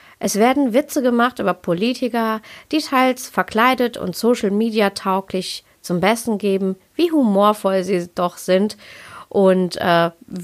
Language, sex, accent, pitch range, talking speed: German, female, German, 180-235 Hz, 120 wpm